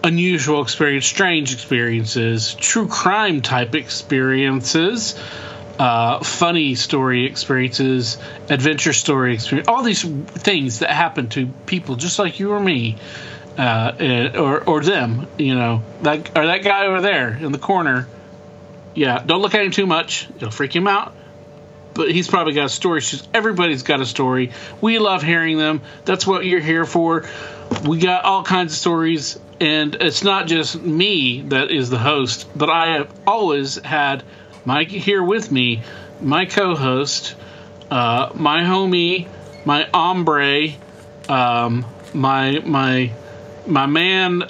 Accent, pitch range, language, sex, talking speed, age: American, 130-175 Hz, English, male, 145 wpm, 40-59